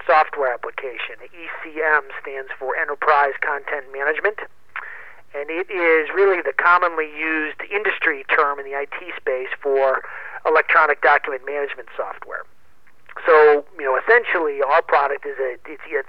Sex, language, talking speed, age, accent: male, English, 140 wpm, 40-59, American